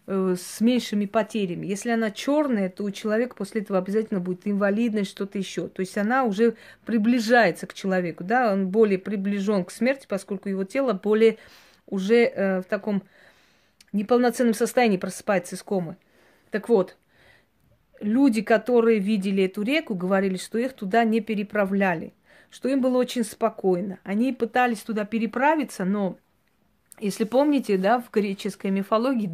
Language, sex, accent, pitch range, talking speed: Russian, female, native, 195-230 Hz, 145 wpm